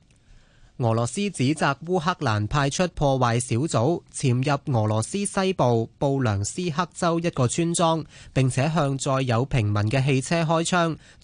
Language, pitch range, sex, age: Chinese, 120-160 Hz, male, 20-39